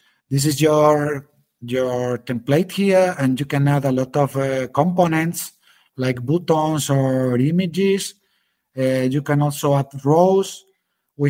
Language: English